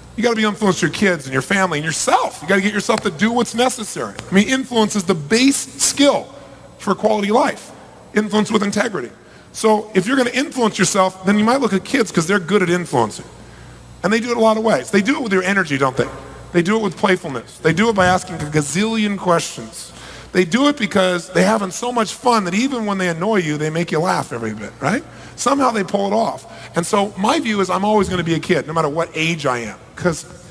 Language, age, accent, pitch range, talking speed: English, 40-59, American, 155-210 Hz, 245 wpm